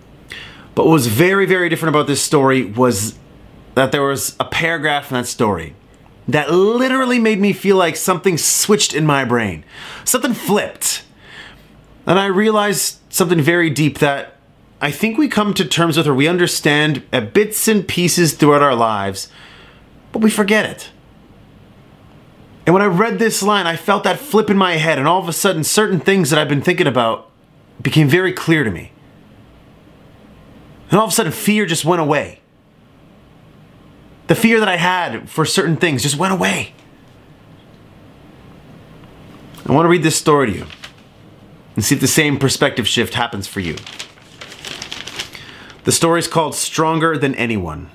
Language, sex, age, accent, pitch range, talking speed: English, male, 30-49, American, 125-185 Hz, 170 wpm